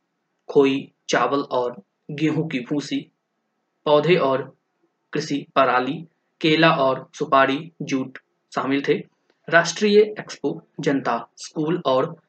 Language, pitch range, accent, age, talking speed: Hindi, 140-160 Hz, native, 20-39, 105 wpm